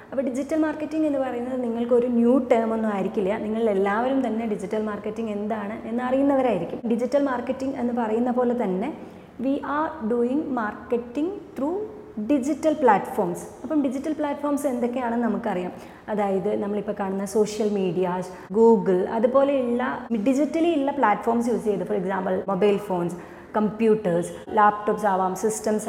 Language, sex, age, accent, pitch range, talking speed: Malayalam, female, 30-49, native, 215-275 Hz, 125 wpm